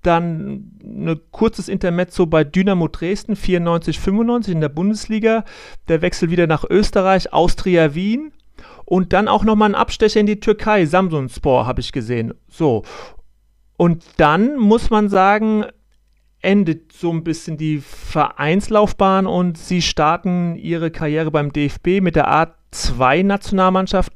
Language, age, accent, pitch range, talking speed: German, 40-59, German, 155-185 Hz, 130 wpm